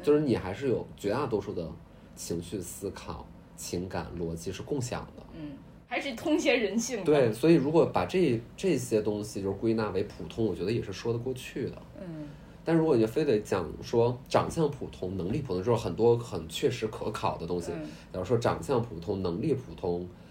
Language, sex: Chinese, male